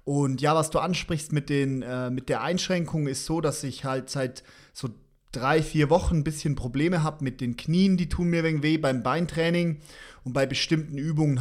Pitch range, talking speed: 135-155 Hz, 205 wpm